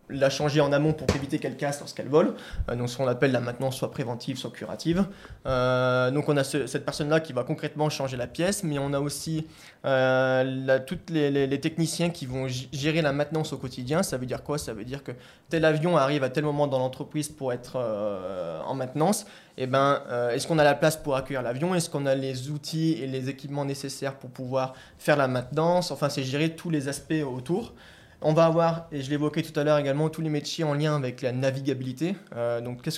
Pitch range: 130-155 Hz